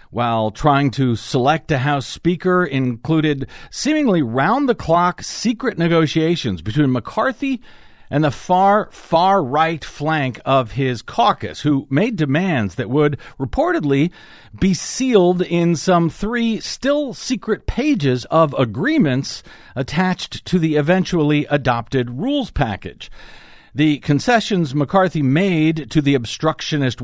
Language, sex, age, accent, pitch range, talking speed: English, male, 50-69, American, 125-170 Hz, 115 wpm